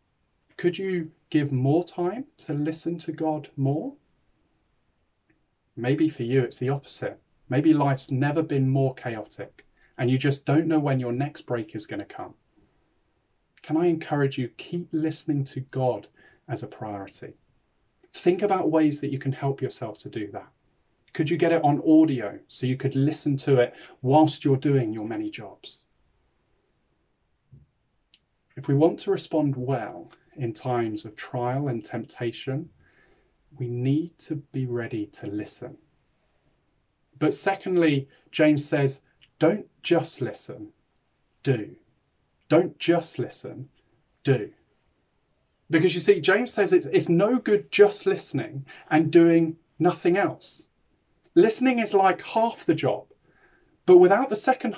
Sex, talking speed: male, 145 wpm